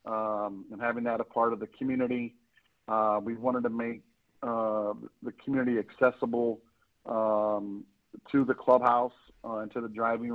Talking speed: 155 wpm